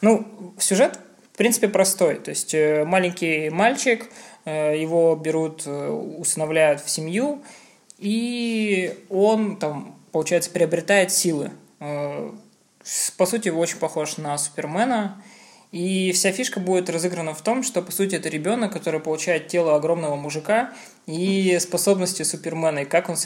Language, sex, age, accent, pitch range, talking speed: Russian, male, 20-39, native, 155-190 Hz, 130 wpm